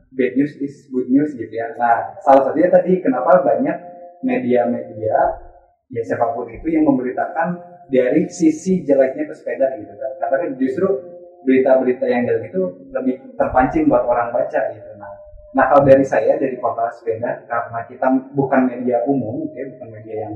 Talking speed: 160 wpm